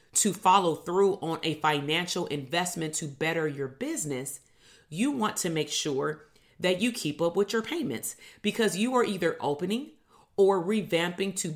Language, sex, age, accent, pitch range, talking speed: English, female, 30-49, American, 155-195 Hz, 160 wpm